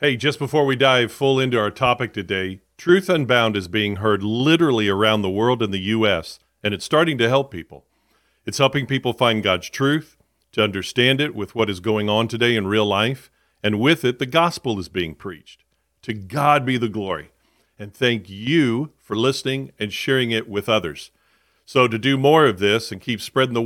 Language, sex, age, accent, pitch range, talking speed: English, male, 40-59, American, 105-140 Hz, 200 wpm